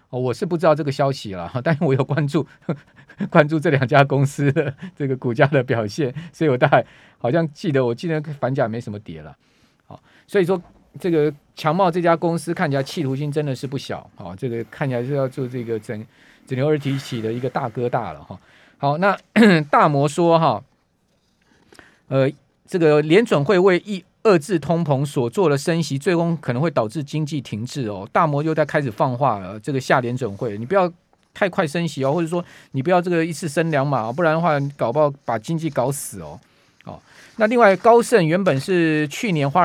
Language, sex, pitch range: Chinese, male, 135-170 Hz